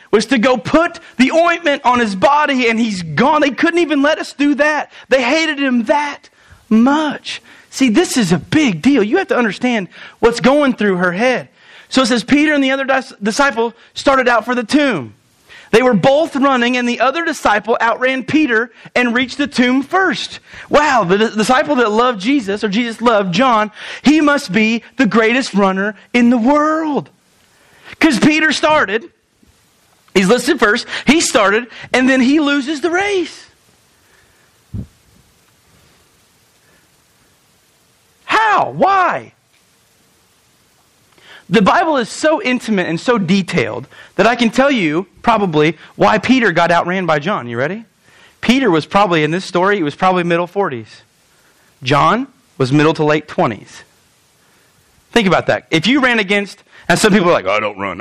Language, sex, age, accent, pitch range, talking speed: English, male, 30-49, American, 200-285 Hz, 160 wpm